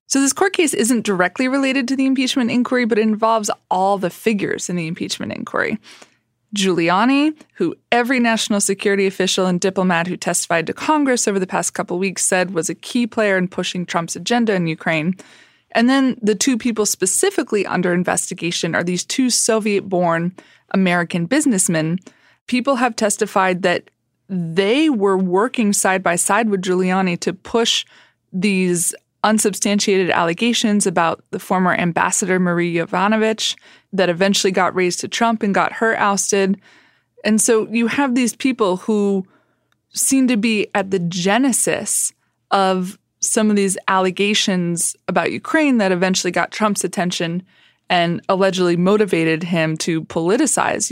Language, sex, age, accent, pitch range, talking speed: English, female, 20-39, American, 180-225 Hz, 150 wpm